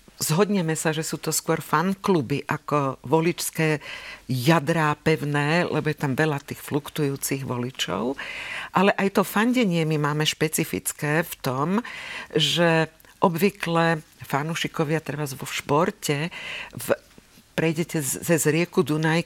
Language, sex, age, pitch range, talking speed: Slovak, female, 50-69, 155-195 Hz, 120 wpm